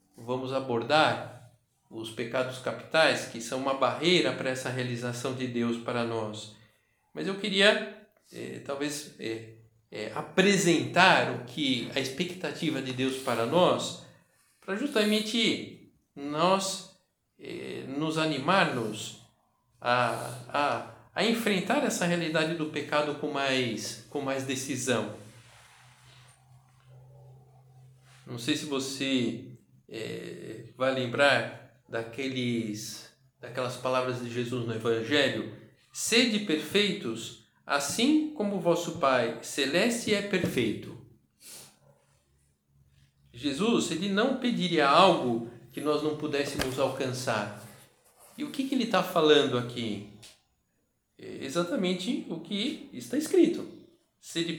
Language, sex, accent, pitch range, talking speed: Portuguese, male, Brazilian, 120-170 Hz, 110 wpm